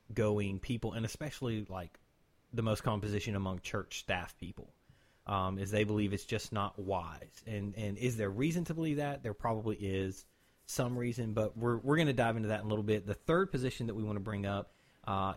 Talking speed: 220 wpm